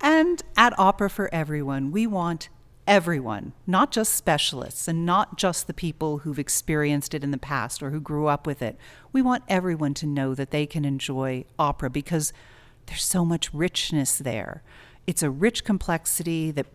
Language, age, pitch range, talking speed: English, 40-59, 140-190 Hz, 175 wpm